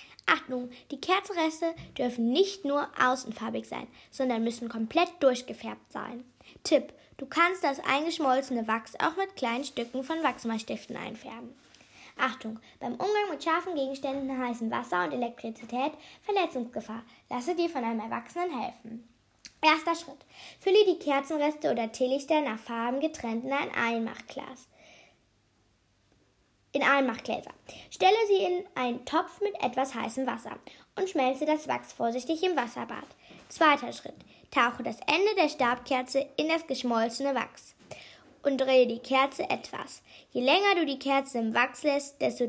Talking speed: 140 wpm